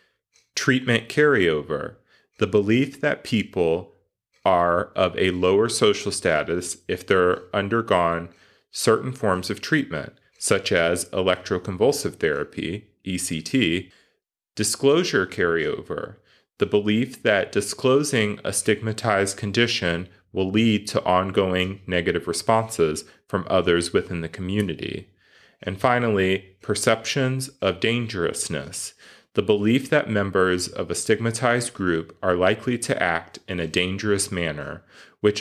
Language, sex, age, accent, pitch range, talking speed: English, male, 30-49, American, 90-115 Hz, 110 wpm